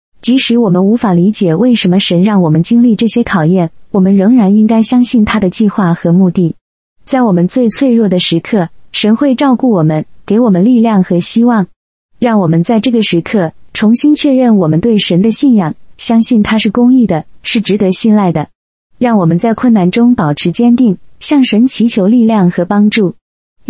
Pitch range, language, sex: 185-245 Hz, Chinese, female